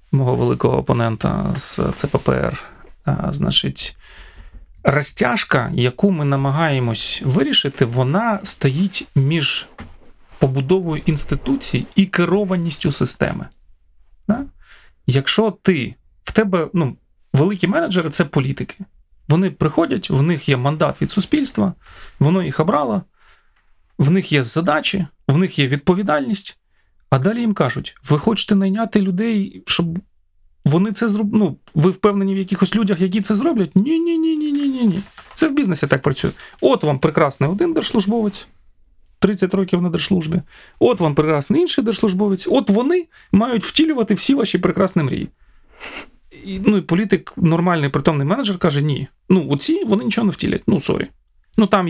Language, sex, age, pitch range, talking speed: Ukrainian, male, 30-49, 145-210 Hz, 135 wpm